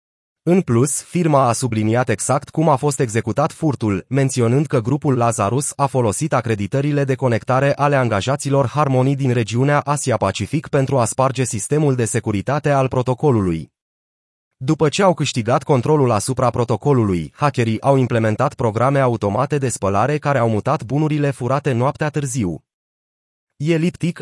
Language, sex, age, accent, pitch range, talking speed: Romanian, male, 30-49, native, 120-150 Hz, 140 wpm